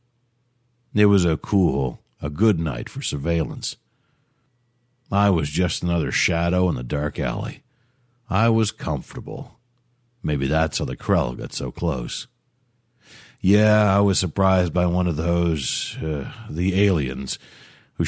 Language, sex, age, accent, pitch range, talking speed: English, male, 60-79, American, 85-120 Hz, 135 wpm